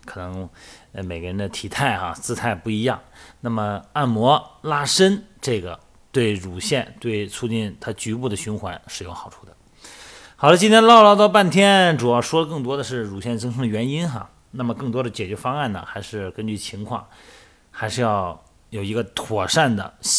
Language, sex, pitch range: Chinese, male, 105-145 Hz